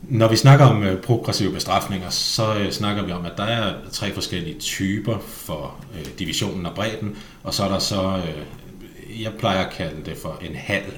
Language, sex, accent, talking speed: Danish, male, native, 180 wpm